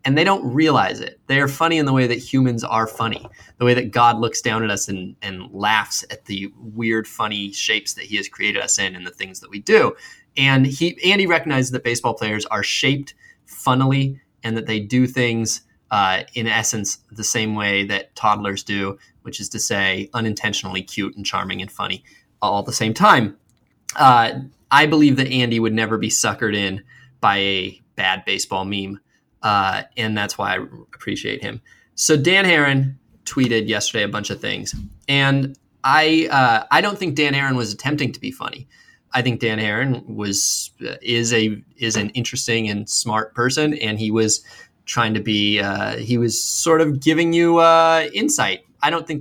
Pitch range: 110-140 Hz